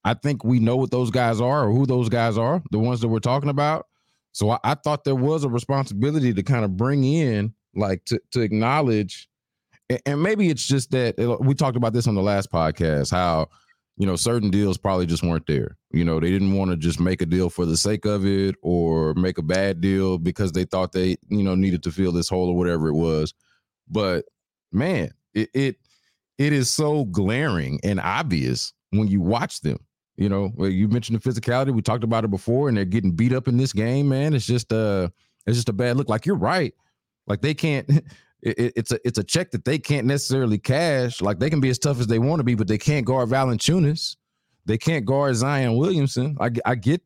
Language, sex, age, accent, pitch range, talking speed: English, male, 20-39, American, 95-130 Hz, 225 wpm